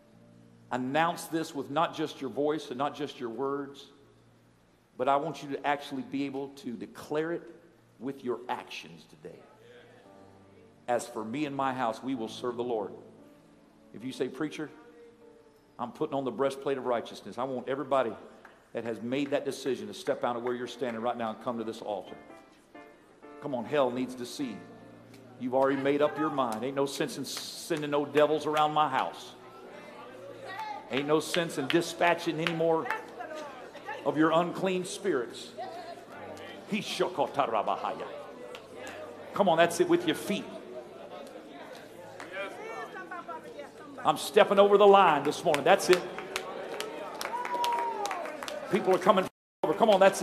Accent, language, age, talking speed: American, English, 50-69, 155 wpm